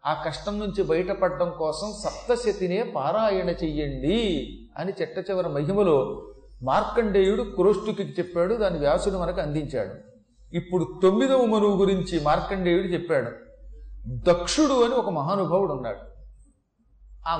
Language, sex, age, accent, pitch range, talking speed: Telugu, male, 40-59, native, 165-210 Hz, 105 wpm